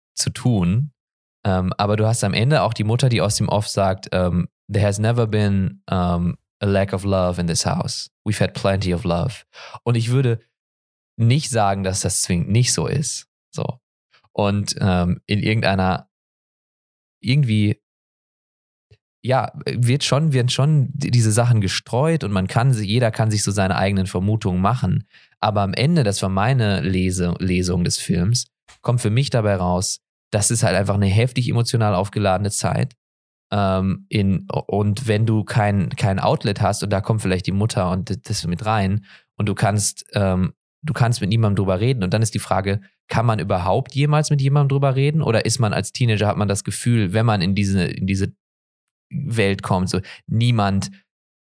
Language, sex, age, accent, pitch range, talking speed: English, male, 20-39, German, 95-120 Hz, 180 wpm